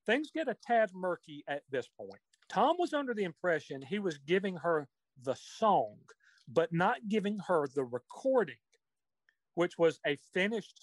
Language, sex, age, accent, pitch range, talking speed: English, male, 40-59, American, 145-205 Hz, 160 wpm